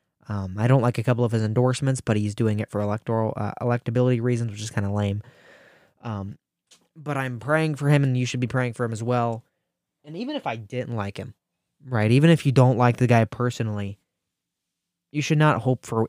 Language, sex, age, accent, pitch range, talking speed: English, male, 20-39, American, 110-135 Hz, 220 wpm